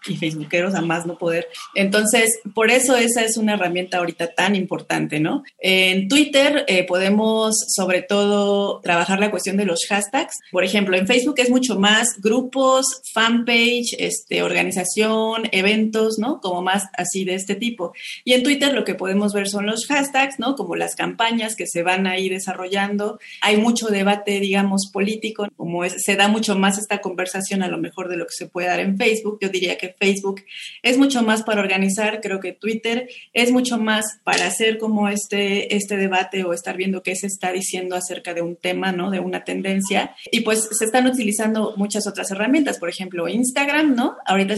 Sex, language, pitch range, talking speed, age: female, Spanish, 185-220 Hz, 190 wpm, 30-49